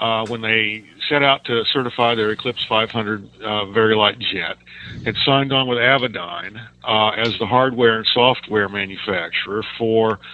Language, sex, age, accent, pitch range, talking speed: English, male, 50-69, American, 105-120 Hz, 155 wpm